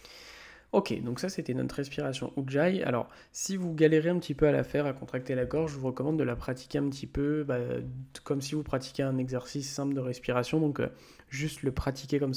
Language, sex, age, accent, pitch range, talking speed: French, male, 20-39, French, 125-150 Hz, 225 wpm